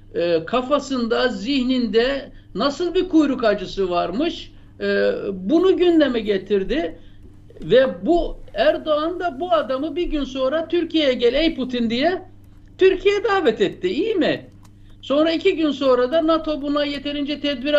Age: 60-79